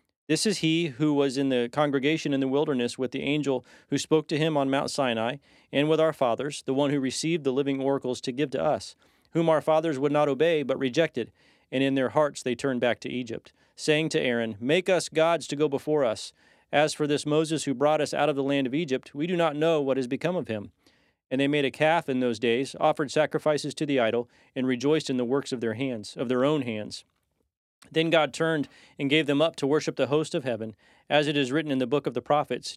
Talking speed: 240 wpm